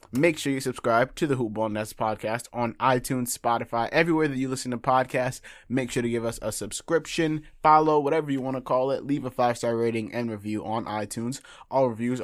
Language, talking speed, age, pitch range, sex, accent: English, 200 wpm, 20-39, 110-130 Hz, male, American